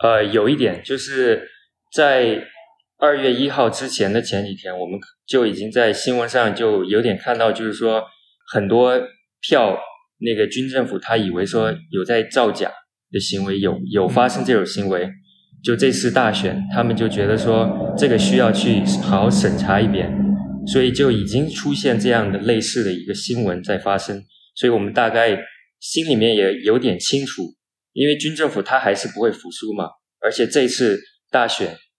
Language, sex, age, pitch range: Chinese, male, 20-39, 110-150 Hz